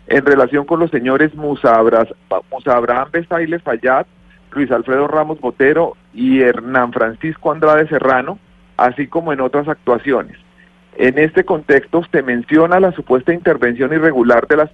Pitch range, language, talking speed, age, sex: 130-165 Hz, Spanish, 145 wpm, 40-59, male